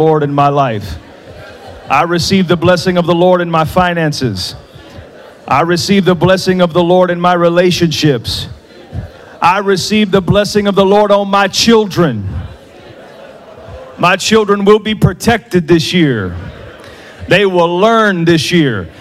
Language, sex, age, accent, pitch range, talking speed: English, male, 40-59, American, 180-255 Hz, 145 wpm